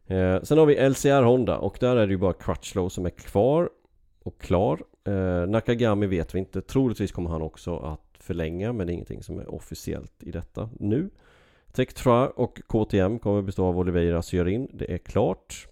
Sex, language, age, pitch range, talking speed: male, Swedish, 30-49, 85-110 Hz, 185 wpm